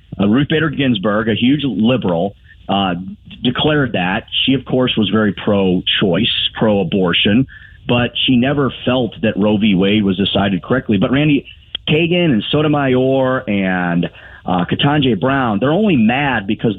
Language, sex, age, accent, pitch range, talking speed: English, male, 30-49, American, 105-130 Hz, 145 wpm